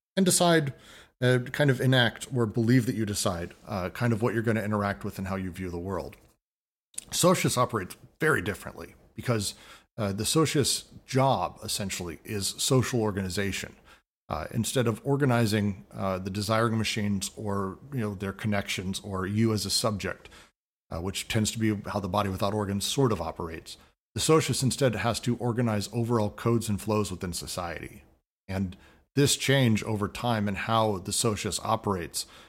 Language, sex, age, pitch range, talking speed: English, male, 40-59, 100-120 Hz, 170 wpm